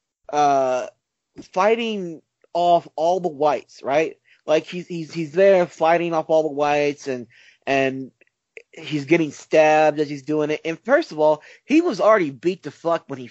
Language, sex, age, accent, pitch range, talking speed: English, male, 30-49, American, 145-200 Hz, 170 wpm